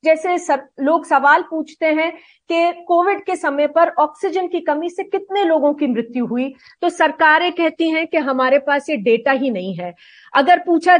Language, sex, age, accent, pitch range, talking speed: Hindi, female, 40-59, native, 255-335 Hz, 185 wpm